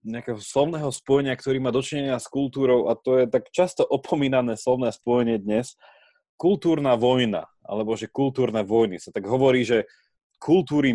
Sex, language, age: male, Slovak, 20-39